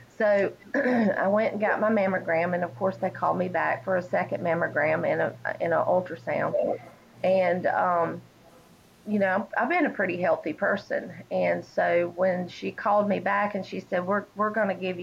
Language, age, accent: English, 30-49, American